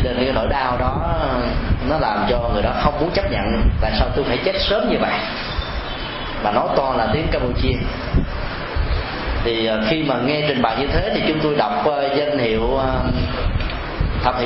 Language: Vietnamese